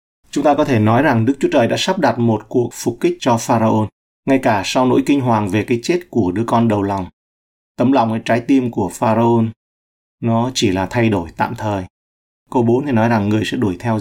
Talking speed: 235 wpm